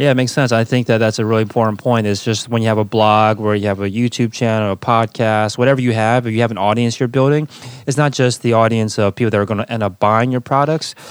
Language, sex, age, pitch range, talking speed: English, male, 20-39, 100-120 Hz, 290 wpm